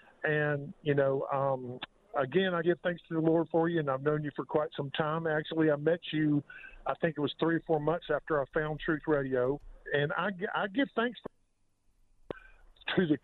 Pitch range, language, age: 145-180 Hz, English, 50-69